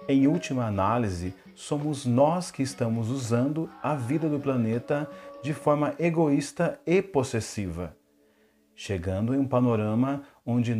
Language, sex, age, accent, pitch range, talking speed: Portuguese, male, 40-59, Brazilian, 115-150 Hz, 120 wpm